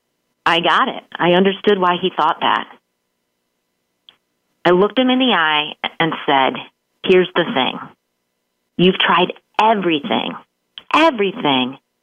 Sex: female